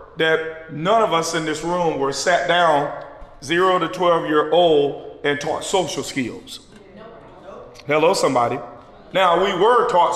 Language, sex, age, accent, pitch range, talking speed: English, male, 40-59, American, 145-185 Hz, 150 wpm